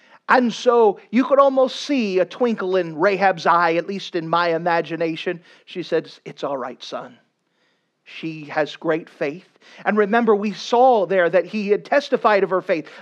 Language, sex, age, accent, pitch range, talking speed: English, male, 40-59, American, 165-235 Hz, 175 wpm